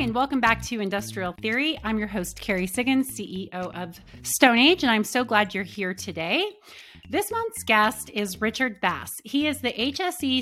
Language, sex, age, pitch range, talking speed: English, female, 30-49, 195-255 Hz, 185 wpm